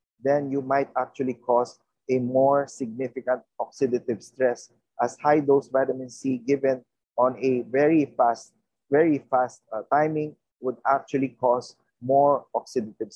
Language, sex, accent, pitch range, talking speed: English, male, Filipino, 125-155 Hz, 130 wpm